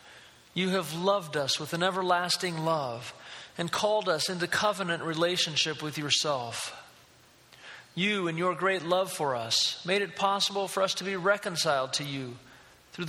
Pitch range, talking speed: 145-190 Hz, 155 wpm